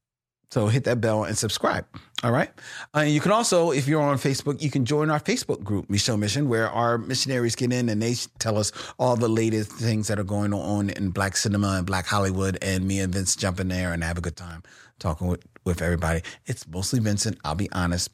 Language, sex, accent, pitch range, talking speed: English, male, American, 100-140 Hz, 230 wpm